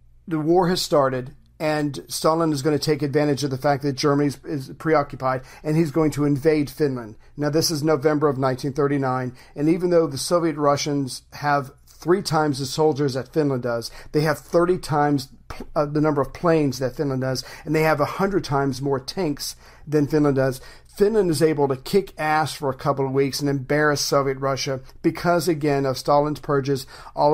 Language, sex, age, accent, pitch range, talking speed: English, male, 50-69, American, 140-160 Hz, 190 wpm